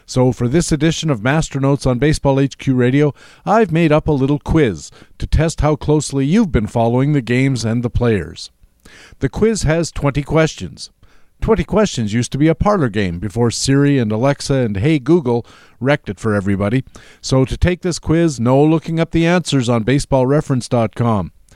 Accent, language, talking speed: American, English, 180 wpm